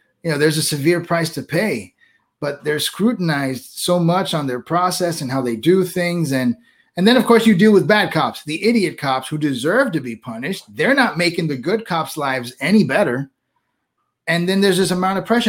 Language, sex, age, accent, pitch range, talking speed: English, male, 30-49, American, 155-210 Hz, 215 wpm